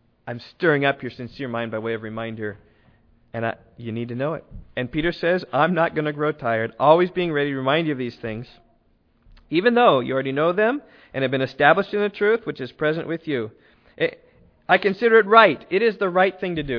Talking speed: 225 wpm